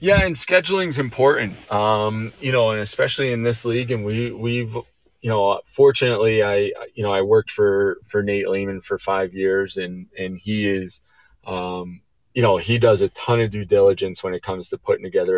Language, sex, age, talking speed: English, male, 20-39, 200 wpm